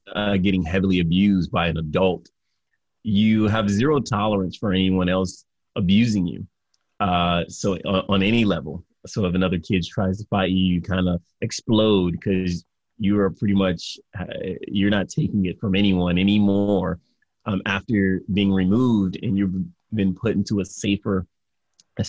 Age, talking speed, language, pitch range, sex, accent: 30-49, 160 wpm, English, 90-100 Hz, male, American